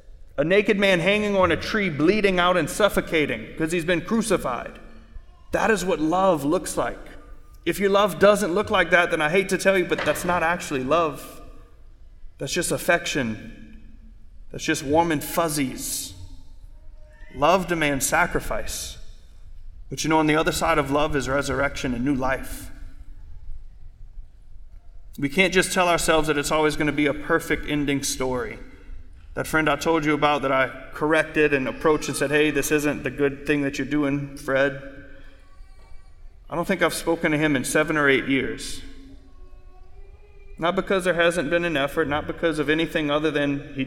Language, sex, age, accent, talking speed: English, male, 30-49, American, 175 wpm